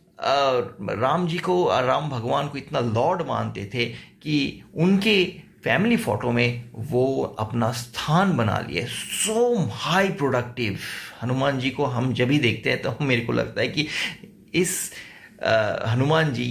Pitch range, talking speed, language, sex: 120-170 Hz, 155 wpm, English, male